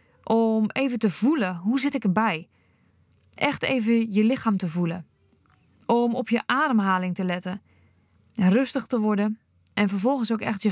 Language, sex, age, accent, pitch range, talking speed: Dutch, female, 20-39, Dutch, 190-250 Hz, 155 wpm